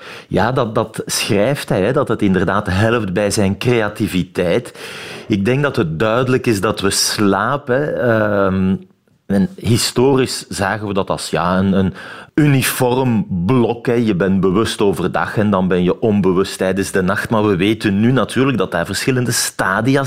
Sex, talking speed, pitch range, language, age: male, 165 wpm, 100-130 Hz, Dutch, 40-59